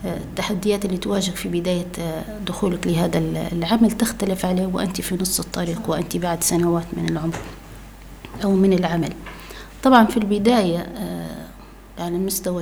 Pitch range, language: 175-210 Hz, Arabic